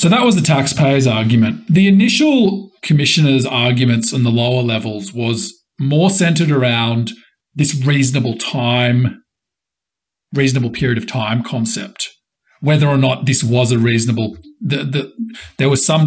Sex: male